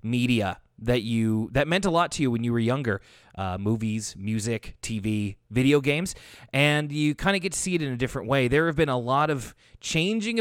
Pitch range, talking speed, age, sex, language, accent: 105-140 Hz, 220 wpm, 30-49, male, English, American